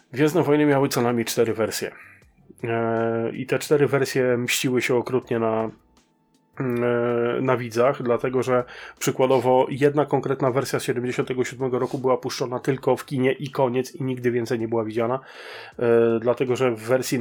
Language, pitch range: Polish, 120-135 Hz